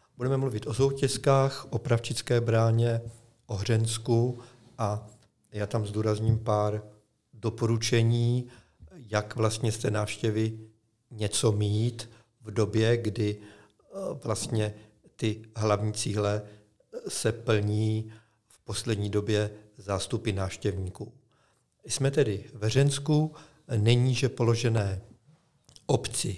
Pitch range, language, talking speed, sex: 110-125 Hz, Czech, 100 wpm, male